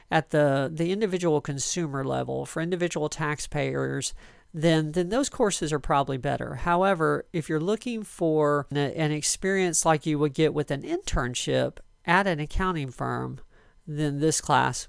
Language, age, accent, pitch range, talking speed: English, 50-69, American, 140-165 Hz, 150 wpm